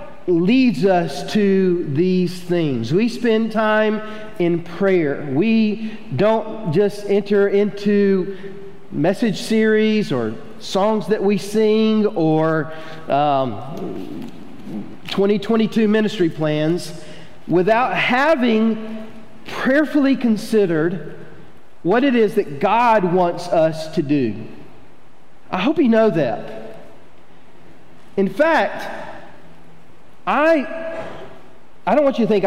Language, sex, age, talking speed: English, male, 40-59, 100 wpm